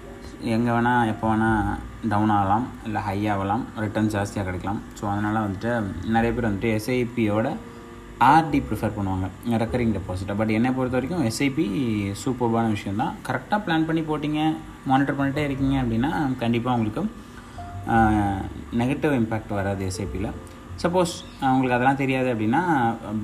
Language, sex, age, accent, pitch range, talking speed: Tamil, male, 20-39, native, 110-130 Hz, 130 wpm